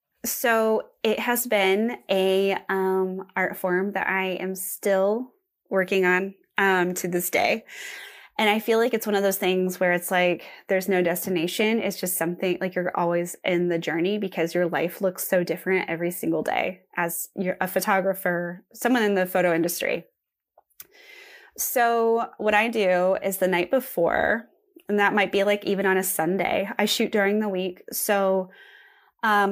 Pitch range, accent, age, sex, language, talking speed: 185-235 Hz, American, 20-39, female, English, 170 wpm